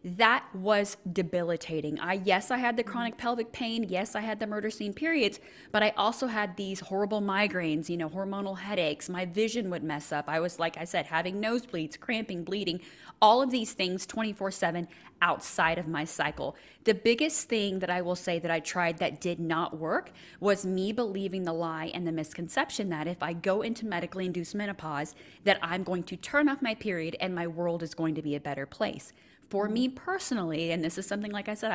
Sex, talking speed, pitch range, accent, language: female, 210 wpm, 170-220 Hz, American, English